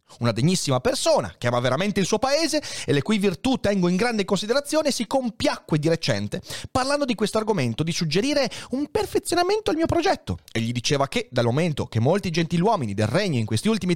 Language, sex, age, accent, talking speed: Italian, male, 30-49, native, 200 wpm